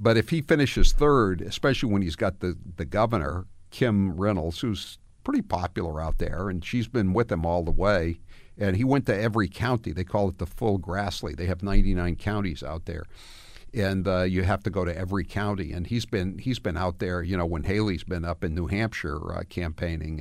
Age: 60-79